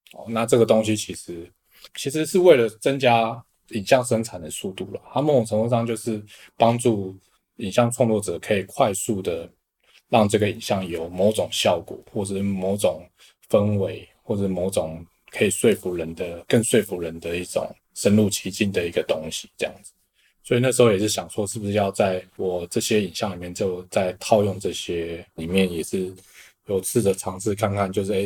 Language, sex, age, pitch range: Chinese, male, 20-39, 95-115 Hz